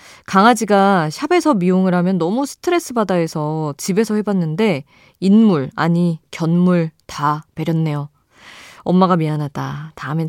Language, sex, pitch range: Korean, female, 155-210 Hz